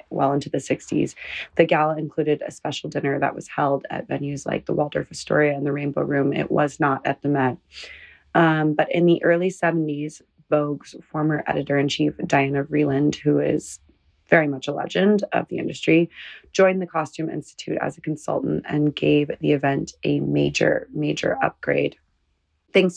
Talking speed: 175 wpm